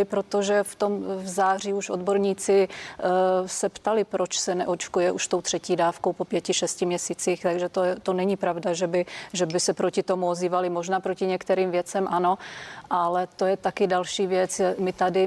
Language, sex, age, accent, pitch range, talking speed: Czech, female, 30-49, native, 180-195 Hz, 190 wpm